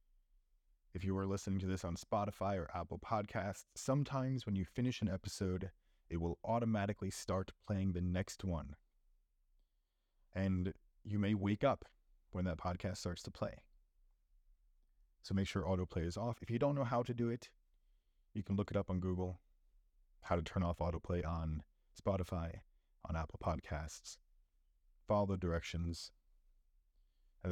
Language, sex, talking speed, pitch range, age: English, male, 155 wpm, 75-95 Hz, 30-49